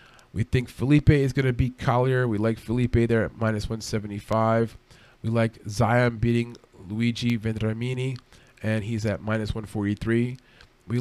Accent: American